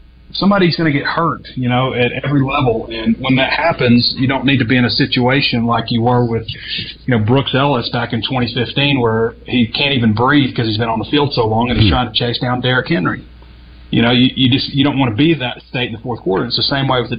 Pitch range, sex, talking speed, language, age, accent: 110-130 Hz, male, 270 wpm, English, 30-49, American